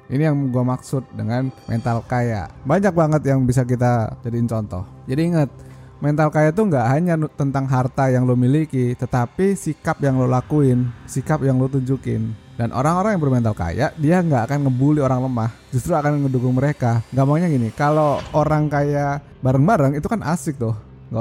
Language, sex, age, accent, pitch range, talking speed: Indonesian, male, 20-39, native, 125-170 Hz, 175 wpm